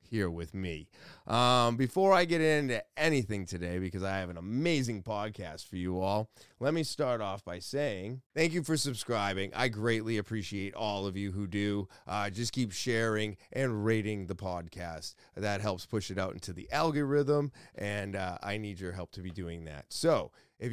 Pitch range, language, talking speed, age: 95-120 Hz, English, 190 wpm, 30-49